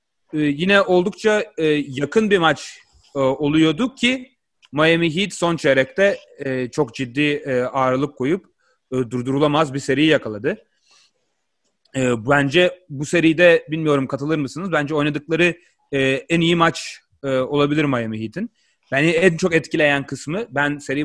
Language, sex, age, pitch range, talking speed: Turkish, male, 30-49, 135-170 Hz, 145 wpm